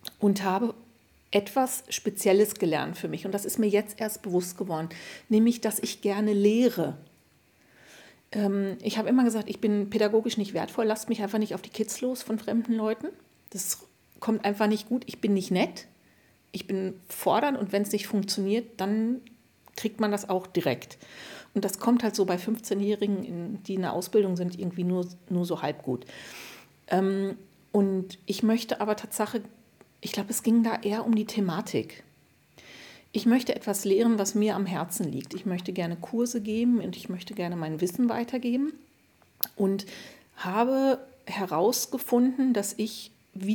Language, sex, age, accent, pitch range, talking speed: German, female, 50-69, German, 195-230 Hz, 170 wpm